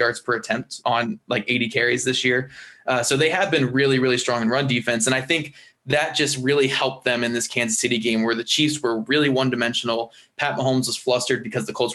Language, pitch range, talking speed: English, 120-135 Hz, 230 wpm